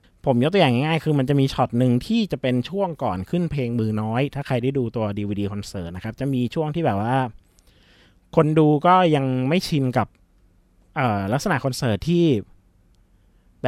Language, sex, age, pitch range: Thai, male, 20-39, 100-140 Hz